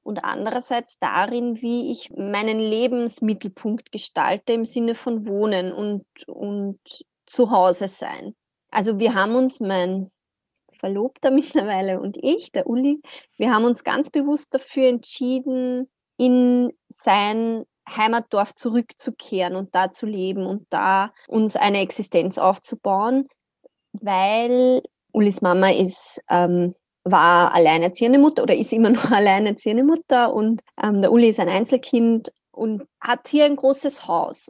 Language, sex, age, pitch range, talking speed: German, female, 20-39, 205-270 Hz, 130 wpm